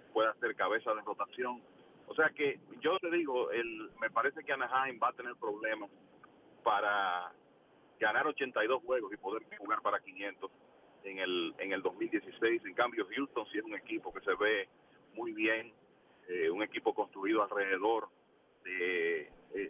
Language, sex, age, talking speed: English, male, 40-59, 165 wpm